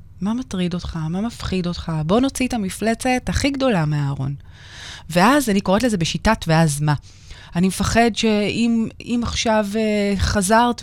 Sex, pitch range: female, 165-230 Hz